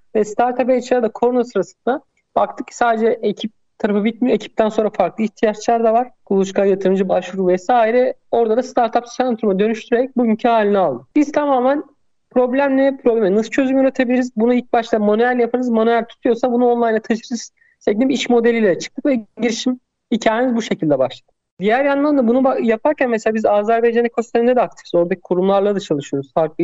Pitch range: 185-240 Hz